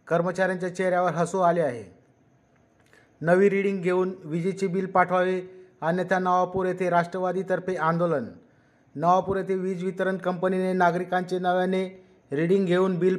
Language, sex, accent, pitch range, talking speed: Marathi, male, native, 180-190 Hz, 120 wpm